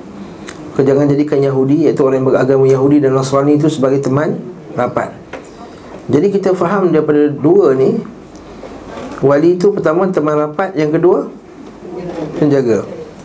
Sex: male